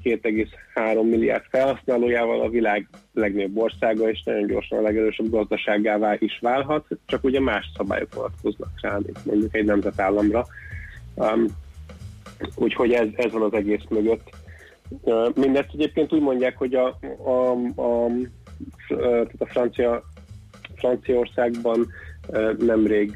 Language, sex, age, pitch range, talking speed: Hungarian, male, 30-49, 100-115 Hz, 120 wpm